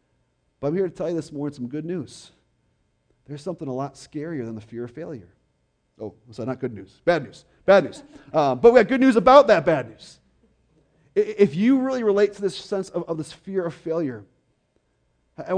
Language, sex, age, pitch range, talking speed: English, male, 30-49, 155-205 Hz, 210 wpm